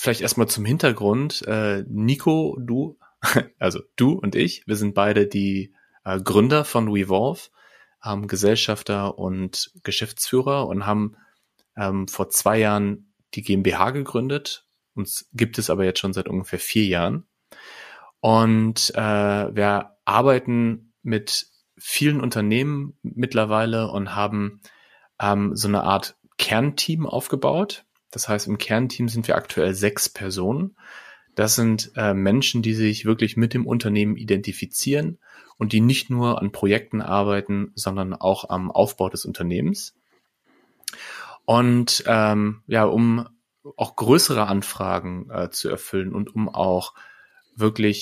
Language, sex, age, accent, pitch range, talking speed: German, male, 30-49, German, 100-120 Hz, 125 wpm